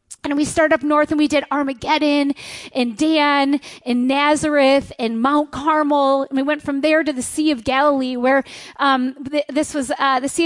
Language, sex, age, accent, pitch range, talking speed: English, female, 30-49, American, 260-310 Hz, 195 wpm